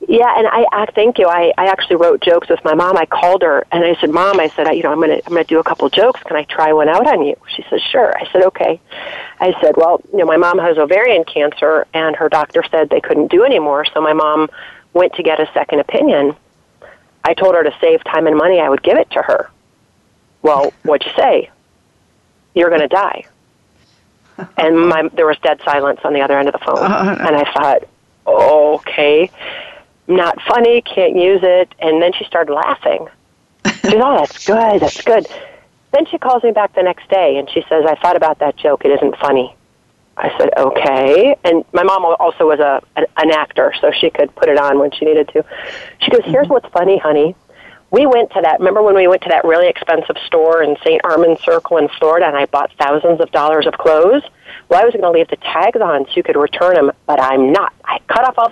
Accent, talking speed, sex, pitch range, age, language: American, 230 wpm, female, 155-235 Hz, 40-59, English